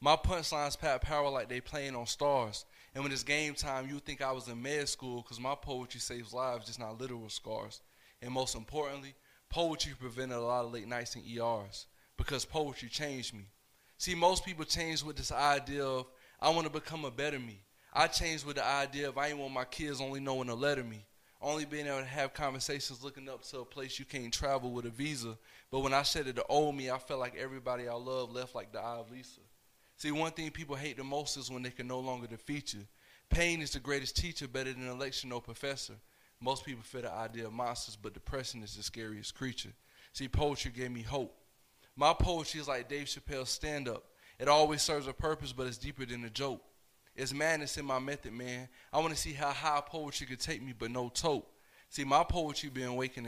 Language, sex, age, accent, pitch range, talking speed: English, male, 20-39, American, 120-145 Hz, 225 wpm